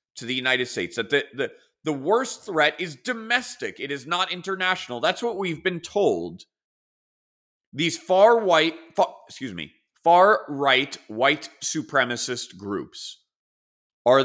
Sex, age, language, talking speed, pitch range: male, 30-49, English, 135 wpm, 125-190 Hz